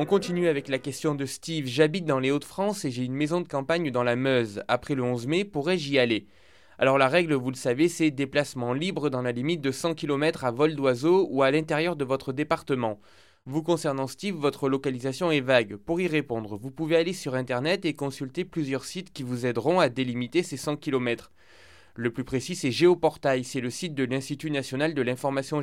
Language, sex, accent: French, male, French